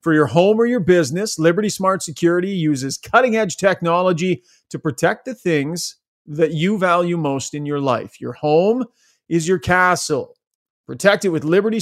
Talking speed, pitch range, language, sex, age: 165 wpm, 140-185 Hz, English, male, 40-59